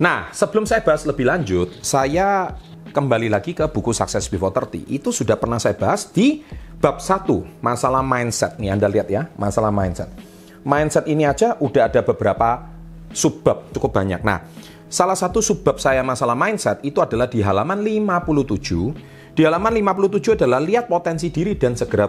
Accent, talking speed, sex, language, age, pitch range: native, 165 wpm, male, Indonesian, 30-49, 100-155 Hz